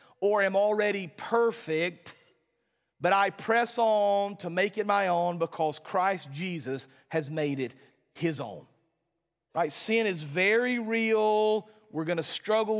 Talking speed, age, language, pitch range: 135 wpm, 40-59, English, 160-210 Hz